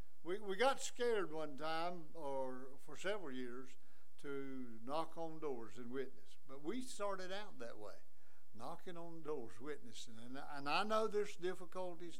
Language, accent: English, American